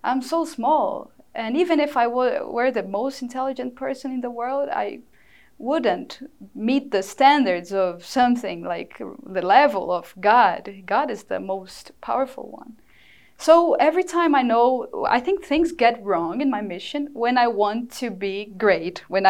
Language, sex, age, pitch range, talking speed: English, female, 20-39, 215-285 Hz, 165 wpm